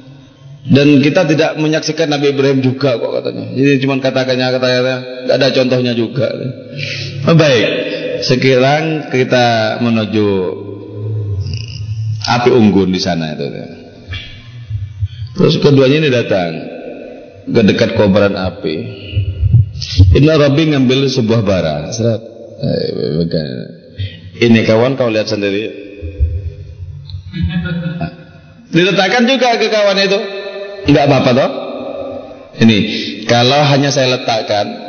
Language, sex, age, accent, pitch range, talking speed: Indonesian, male, 30-49, native, 110-155 Hz, 95 wpm